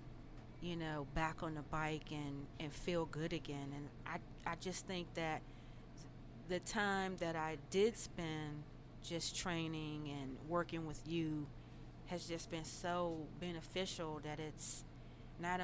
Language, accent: English, American